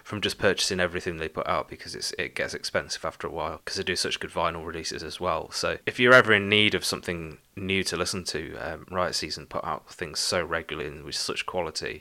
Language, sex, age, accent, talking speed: English, male, 30-49, British, 235 wpm